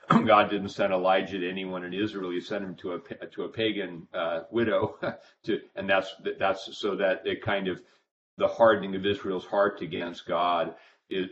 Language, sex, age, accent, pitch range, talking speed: English, male, 40-59, American, 95-110 Hz, 185 wpm